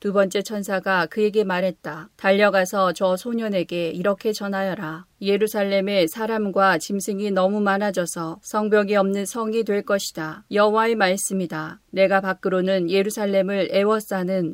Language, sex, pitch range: Korean, female, 185-210 Hz